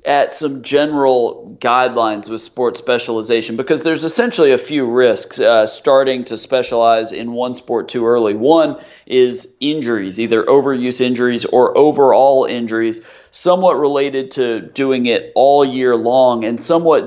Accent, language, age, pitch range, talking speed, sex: American, English, 40-59, 120-145 Hz, 145 wpm, male